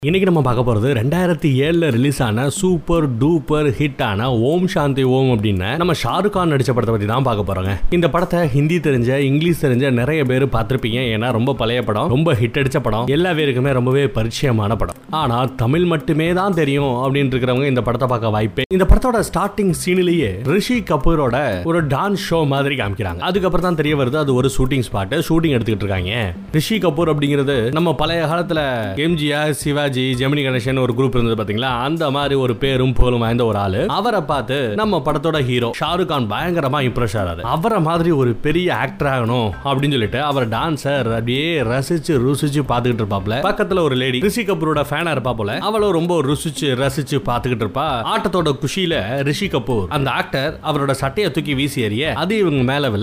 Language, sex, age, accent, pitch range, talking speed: Tamil, male, 30-49, native, 125-160 Hz, 110 wpm